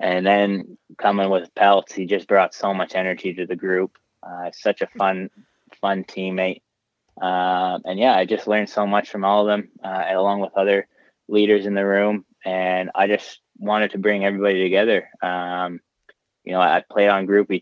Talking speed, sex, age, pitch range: 185 wpm, male, 20-39, 90-100 Hz